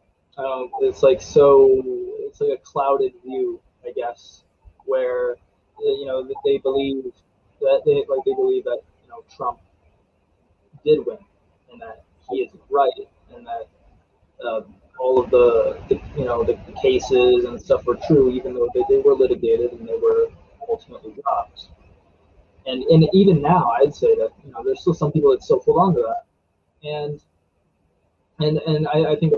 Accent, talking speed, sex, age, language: American, 170 wpm, male, 20-39, English